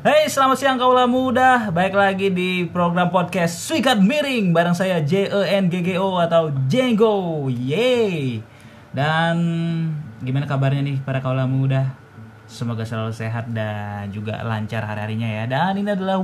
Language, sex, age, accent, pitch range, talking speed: Indonesian, male, 20-39, native, 120-165 Hz, 135 wpm